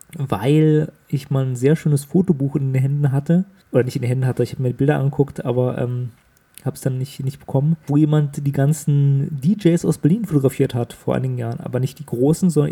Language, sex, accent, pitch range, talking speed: German, male, German, 135-155 Hz, 225 wpm